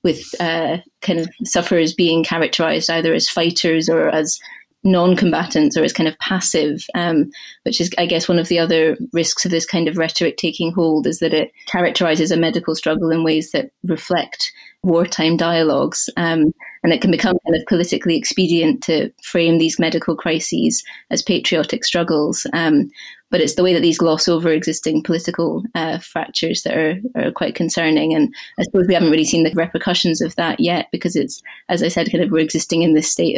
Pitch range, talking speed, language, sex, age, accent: 160-180 Hz, 190 wpm, English, female, 20-39, British